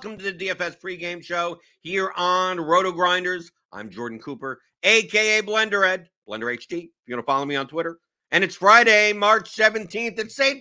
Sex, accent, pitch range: male, American, 135-205 Hz